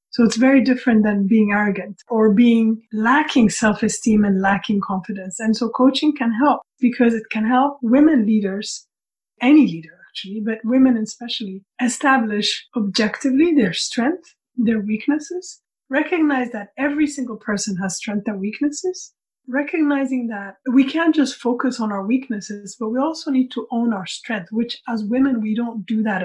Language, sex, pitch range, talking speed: English, female, 215-260 Hz, 160 wpm